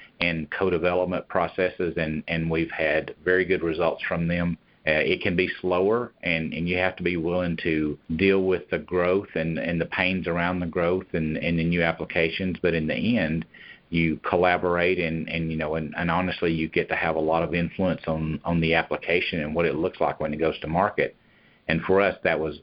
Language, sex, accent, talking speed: English, male, American, 215 wpm